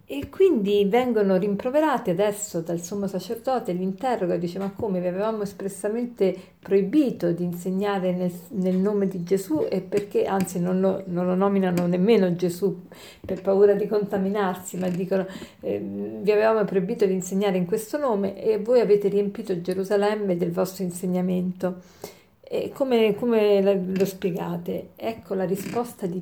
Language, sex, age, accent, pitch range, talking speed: Italian, female, 50-69, native, 185-220 Hz, 150 wpm